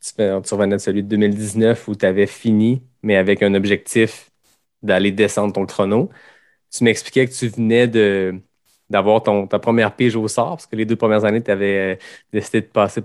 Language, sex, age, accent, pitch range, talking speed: French, male, 20-39, Canadian, 100-120 Hz, 185 wpm